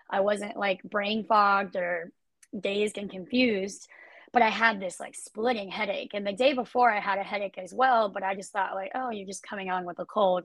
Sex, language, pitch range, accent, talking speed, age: female, English, 195-235 Hz, American, 225 wpm, 20-39